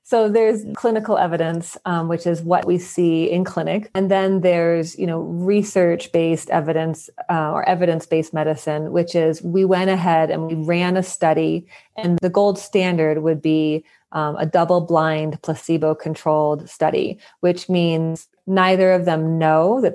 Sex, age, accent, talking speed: female, 30-49, American, 160 wpm